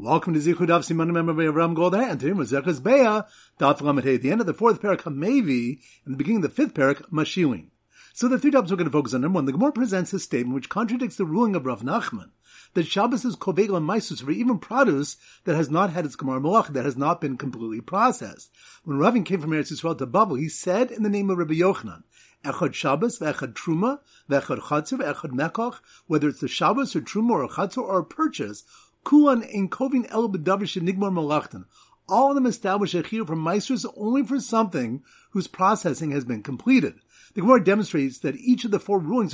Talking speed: 205 wpm